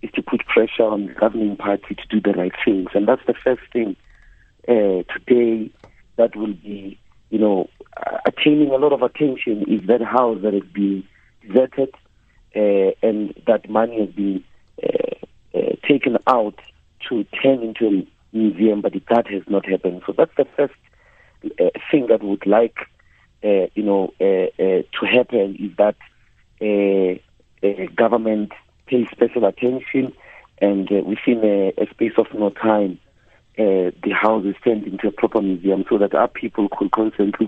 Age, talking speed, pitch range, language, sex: 50-69, 170 wpm, 100-120 Hz, English, male